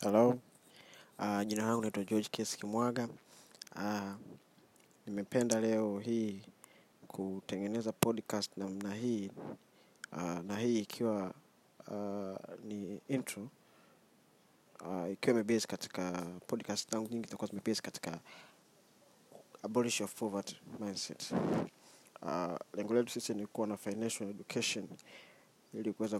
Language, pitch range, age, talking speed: Swahili, 100-120 Hz, 20-39, 115 wpm